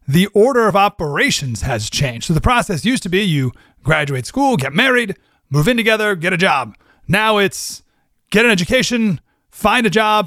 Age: 30-49